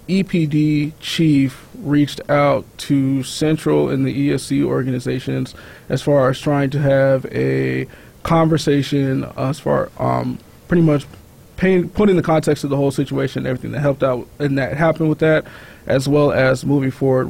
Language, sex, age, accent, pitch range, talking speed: English, male, 20-39, American, 140-170 Hz, 155 wpm